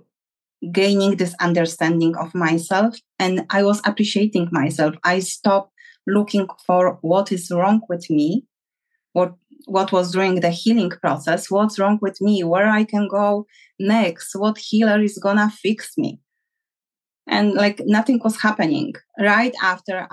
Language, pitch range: English, 175-230 Hz